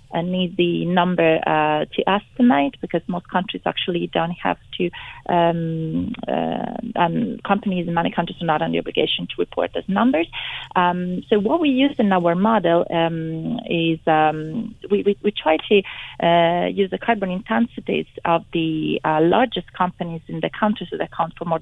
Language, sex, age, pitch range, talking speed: English, female, 30-49, 165-210 Hz, 175 wpm